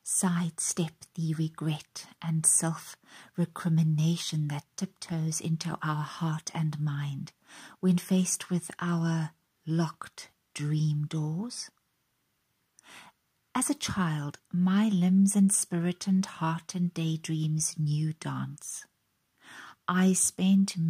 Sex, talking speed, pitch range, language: female, 100 wpm, 155-185 Hz, English